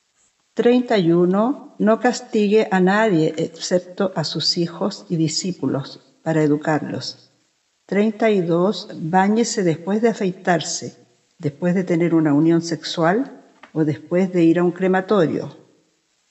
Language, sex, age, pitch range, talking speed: Spanish, female, 50-69, 160-205 Hz, 115 wpm